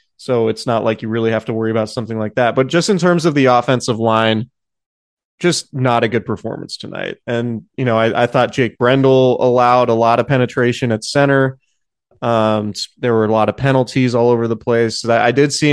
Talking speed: 220 wpm